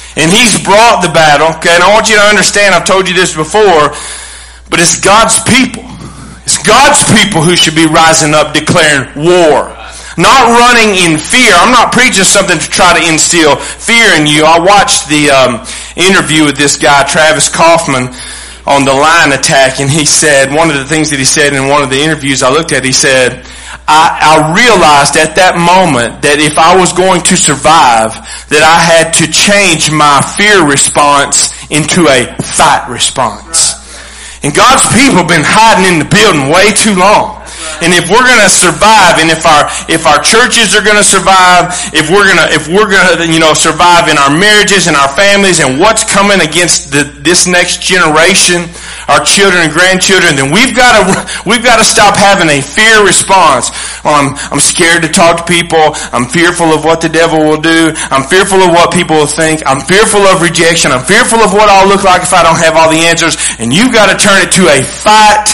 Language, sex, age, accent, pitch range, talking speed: English, male, 40-59, American, 155-195 Hz, 195 wpm